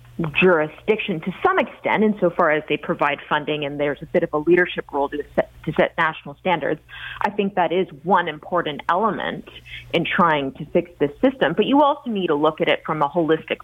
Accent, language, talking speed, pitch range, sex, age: American, English, 200 wpm, 155-215 Hz, female, 30-49